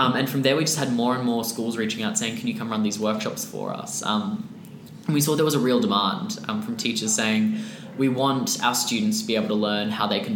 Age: 10-29